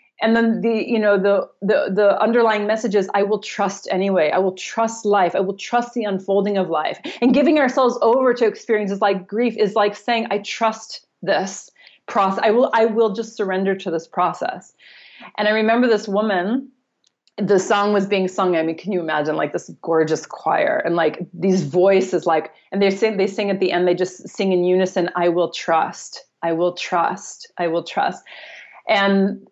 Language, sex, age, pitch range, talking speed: English, female, 30-49, 185-230 Hz, 195 wpm